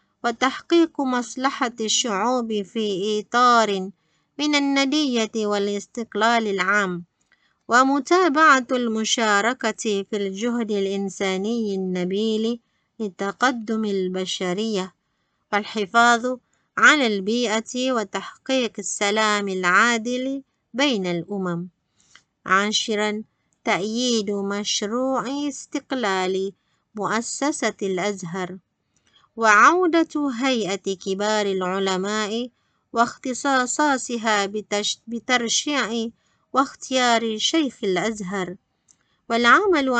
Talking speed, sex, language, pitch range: 65 wpm, female, Malay, 200-250 Hz